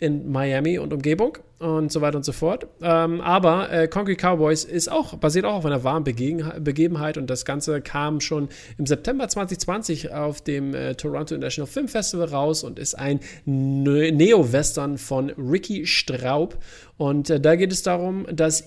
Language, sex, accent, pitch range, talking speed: German, male, German, 130-160 Hz, 160 wpm